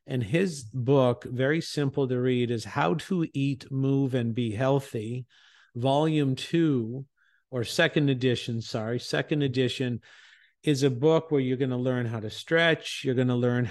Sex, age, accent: male, 50-69, American